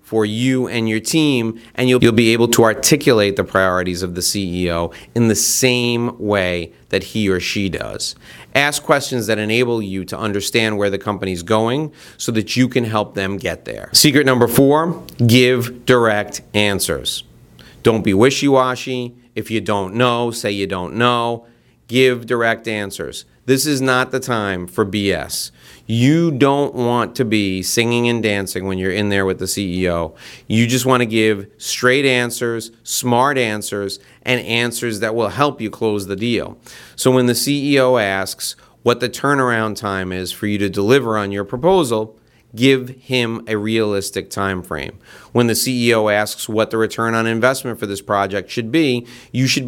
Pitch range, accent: 100-125 Hz, American